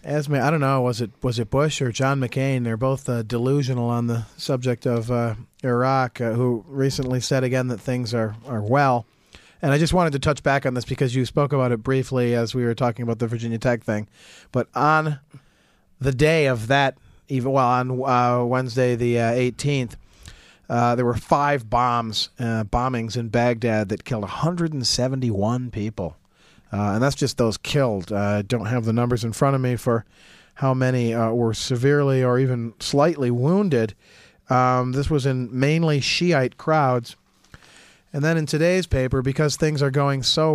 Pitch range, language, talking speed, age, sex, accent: 120-145 Hz, English, 185 wpm, 40-59, male, American